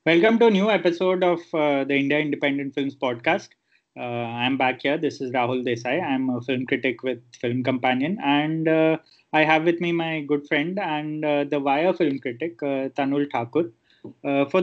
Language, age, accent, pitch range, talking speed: English, 20-39, Indian, 135-165 Hz, 195 wpm